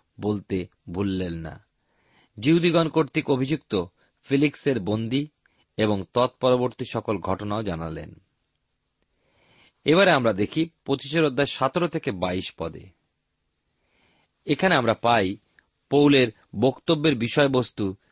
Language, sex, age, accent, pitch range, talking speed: Bengali, male, 40-59, native, 105-150 Hz, 90 wpm